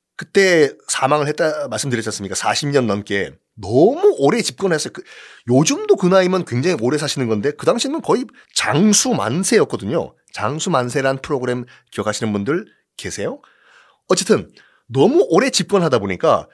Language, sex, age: Korean, male, 30-49